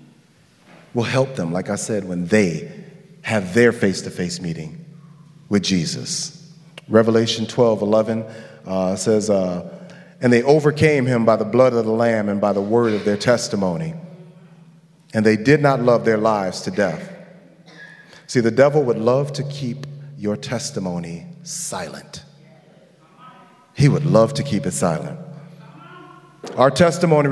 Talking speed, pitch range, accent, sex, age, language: 145 wpm, 115-160 Hz, American, male, 40-59, English